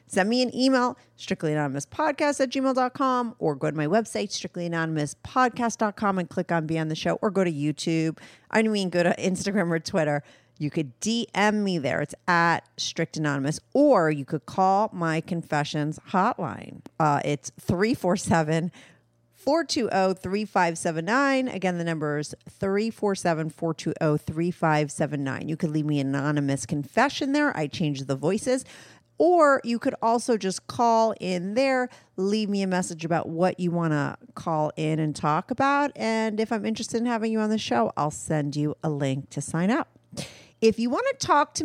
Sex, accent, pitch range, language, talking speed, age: female, American, 155-225 Hz, English, 165 wpm, 40-59